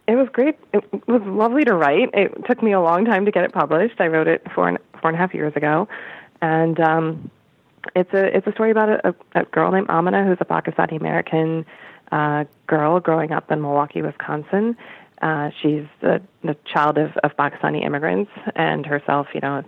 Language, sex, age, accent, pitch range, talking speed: English, female, 20-39, American, 155-190 Hz, 200 wpm